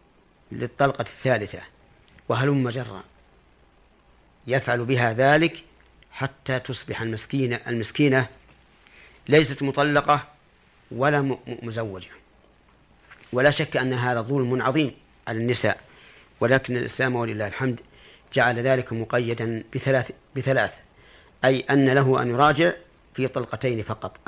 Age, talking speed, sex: 40-59, 100 wpm, male